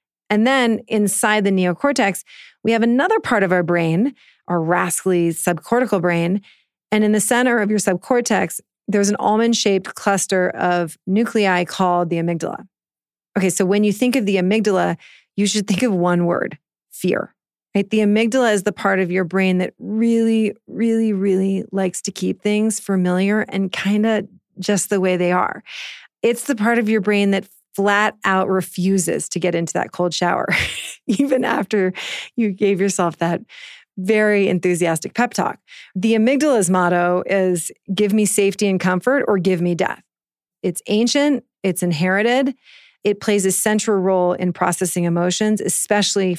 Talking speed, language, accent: 160 wpm, English, American